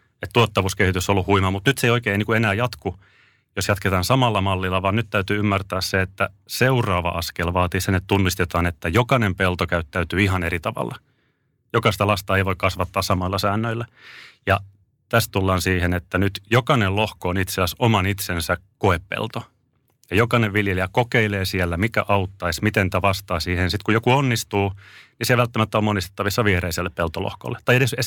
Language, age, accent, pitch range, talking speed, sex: Finnish, 30-49, native, 90-110 Hz, 170 wpm, male